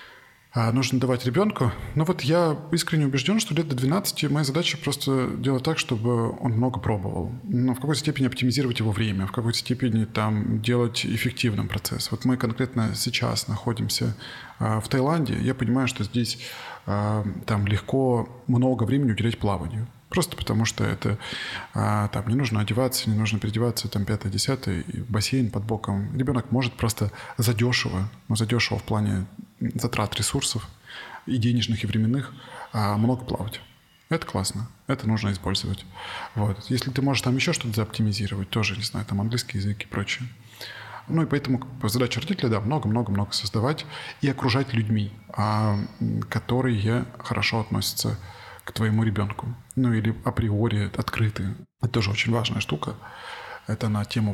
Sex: male